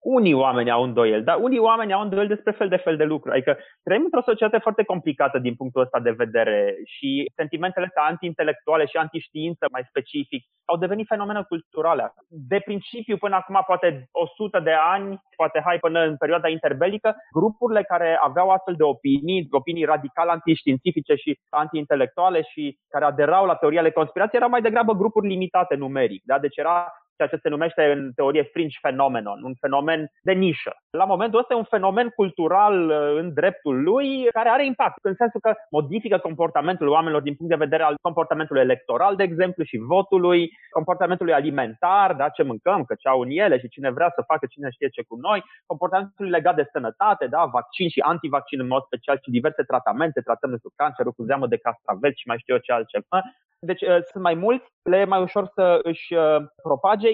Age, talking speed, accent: 20-39, 185 wpm, native